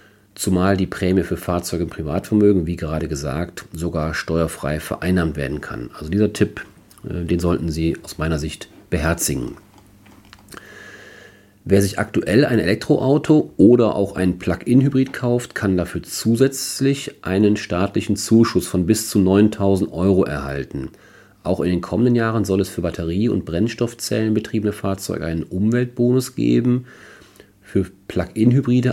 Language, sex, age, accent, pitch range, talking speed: German, male, 40-59, German, 85-105 Hz, 135 wpm